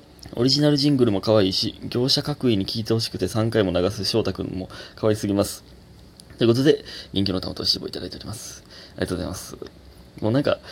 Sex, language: male, Japanese